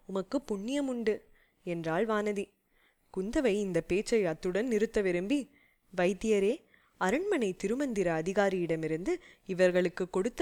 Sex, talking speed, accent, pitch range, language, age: female, 100 wpm, Indian, 175-230 Hz, English, 20-39